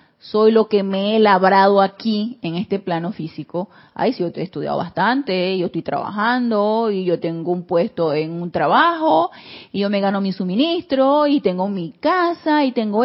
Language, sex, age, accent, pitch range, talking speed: Spanish, female, 30-49, Venezuelan, 180-245 Hz, 185 wpm